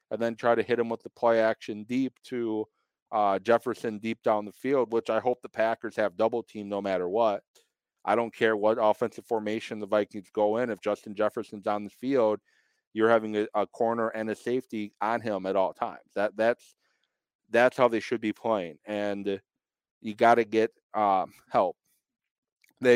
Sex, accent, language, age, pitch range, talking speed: male, American, English, 40-59, 105-115 Hz, 190 wpm